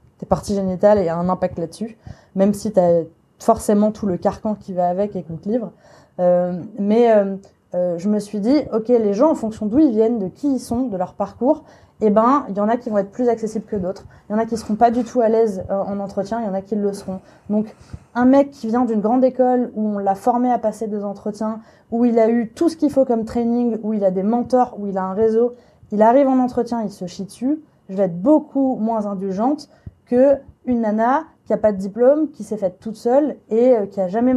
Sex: female